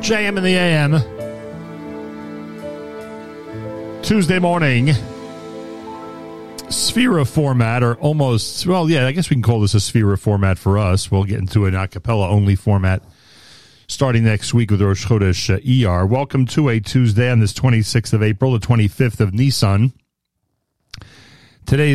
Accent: American